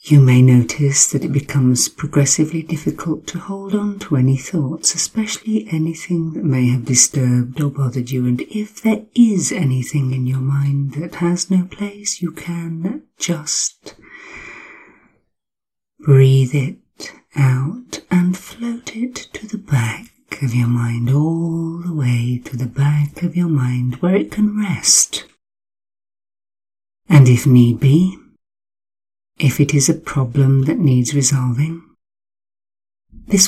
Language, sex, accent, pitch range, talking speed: English, female, British, 120-165 Hz, 135 wpm